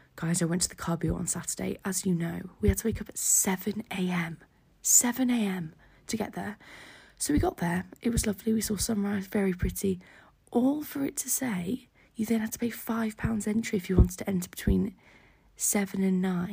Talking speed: 195 wpm